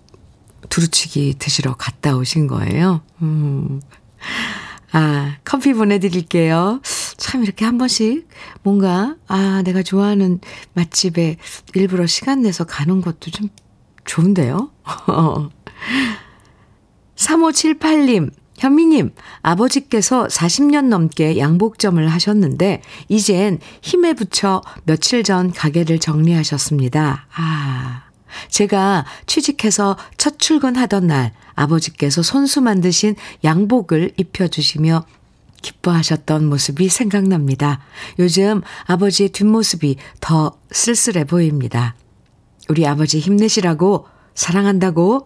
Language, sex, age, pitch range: Korean, female, 50-69, 145-200 Hz